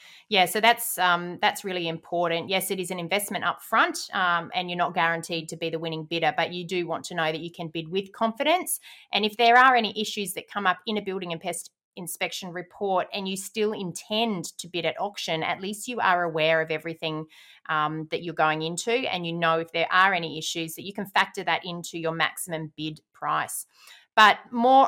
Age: 30-49